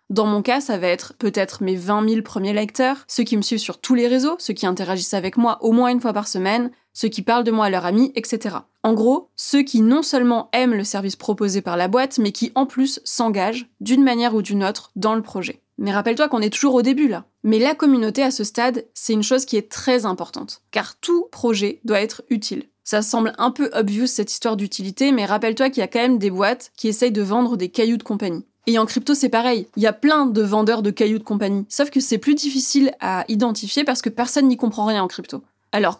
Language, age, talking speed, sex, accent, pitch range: French, 20-39, 250 wpm, female, French, 210-255 Hz